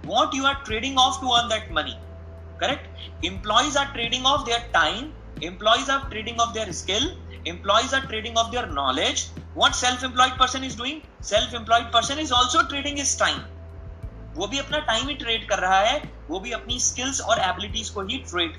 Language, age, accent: Hindi, 30-49, native